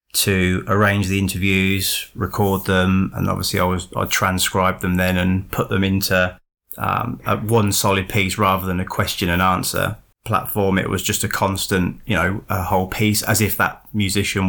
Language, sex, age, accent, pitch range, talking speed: English, male, 20-39, British, 95-105 Hz, 180 wpm